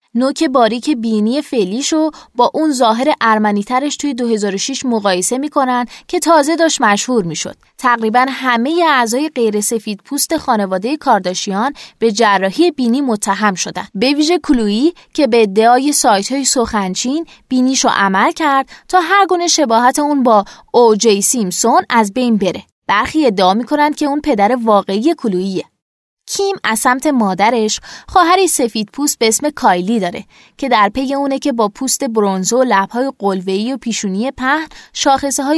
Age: 20-39